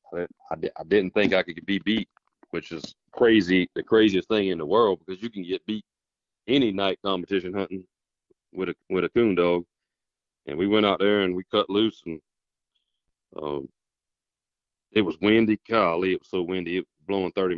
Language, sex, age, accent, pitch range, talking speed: English, male, 40-59, American, 85-95 Hz, 190 wpm